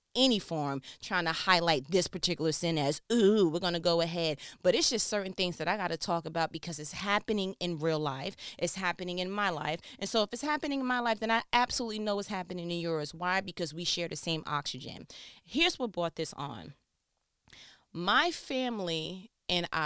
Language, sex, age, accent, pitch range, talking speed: English, female, 30-49, American, 160-225 Hz, 205 wpm